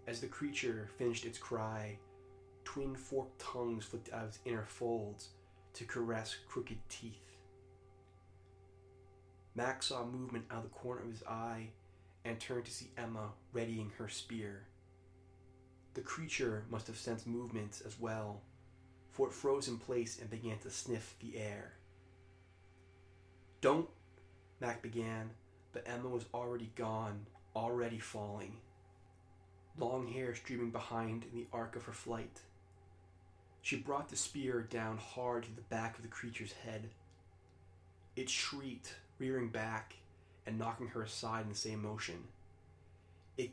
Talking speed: 140 wpm